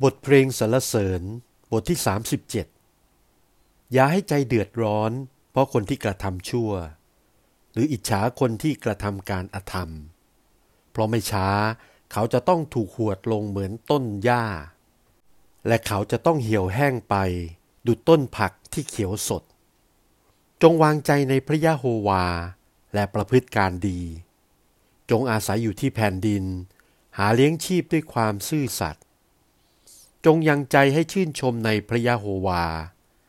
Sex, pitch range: male, 100-135 Hz